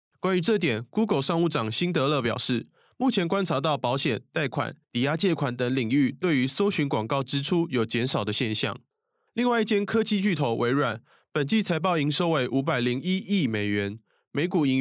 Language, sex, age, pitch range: Chinese, male, 20-39, 120-170 Hz